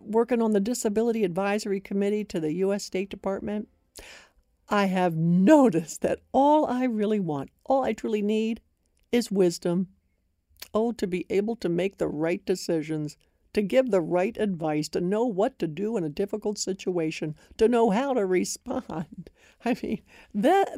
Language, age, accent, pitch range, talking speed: English, 60-79, American, 165-250 Hz, 160 wpm